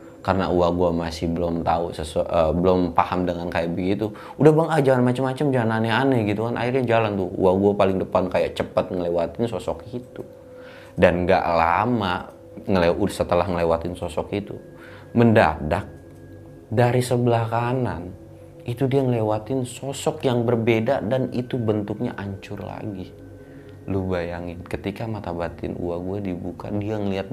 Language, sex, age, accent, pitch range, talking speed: Indonesian, male, 30-49, native, 90-115 Hz, 140 wpm